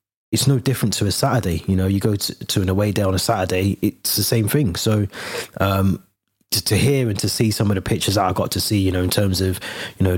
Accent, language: British, English